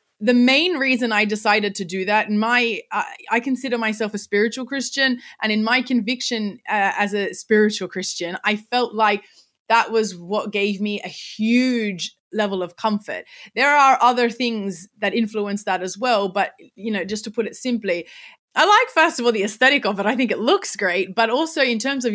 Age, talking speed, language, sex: 20-39, 205 wpm, English, female